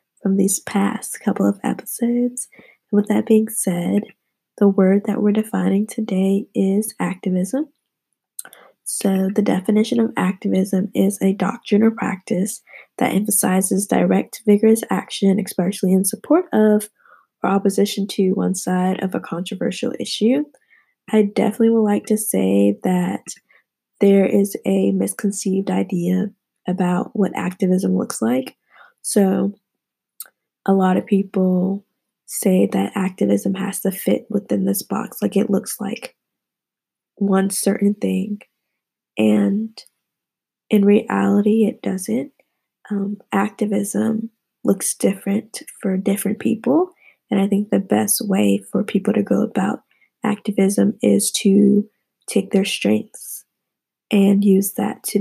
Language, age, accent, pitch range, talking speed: English, 20-39, American, 190-215 Hz, 130 wpm